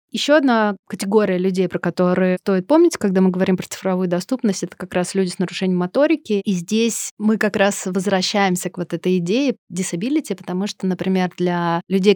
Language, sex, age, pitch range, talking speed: Russian, female, 30-49, 180-205 Hz, 185 wpm